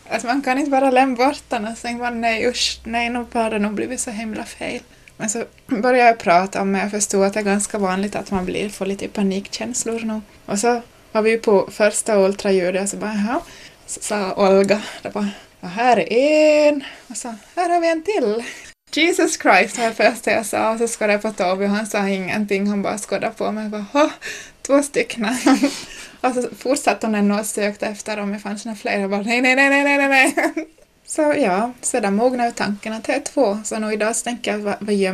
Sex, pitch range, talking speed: female, 205-245 Hz, 215 wpm